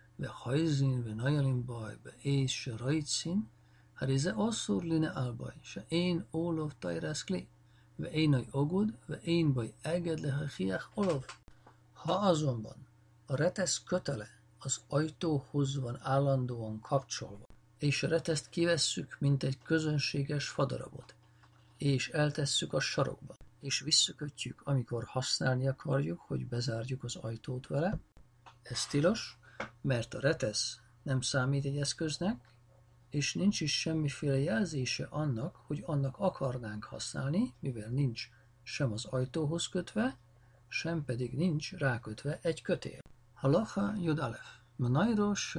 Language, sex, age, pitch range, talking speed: Hungarian, male, 50-69, 120-160 Hz, 115 wpm